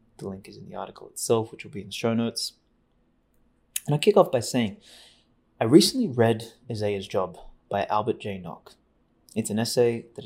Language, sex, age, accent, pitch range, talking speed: English, male, 20-39, Australian, 100-120 Hz, 195 wpm